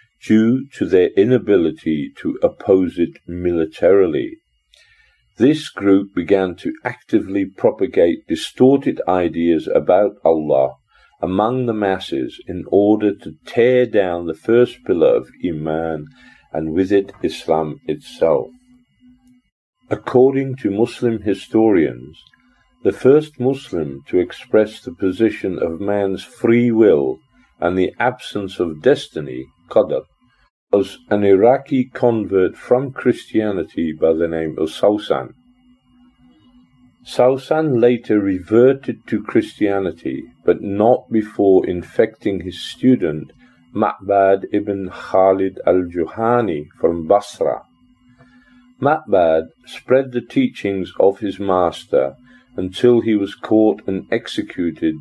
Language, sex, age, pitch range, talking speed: Indonesian, male, 50-69, 90-130 Hz, 105 wpm